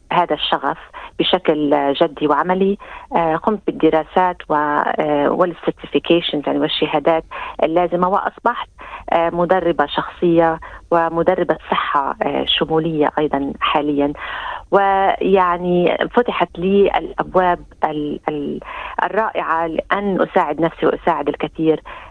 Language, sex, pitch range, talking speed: Arabic, female, 155-190 Hz, 75 wpm